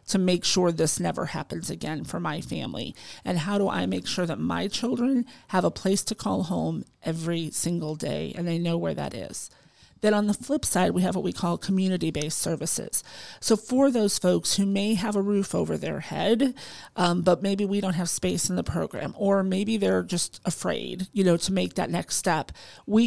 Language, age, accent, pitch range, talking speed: English, 40-59, American, 165-200 Hz, 210 wpm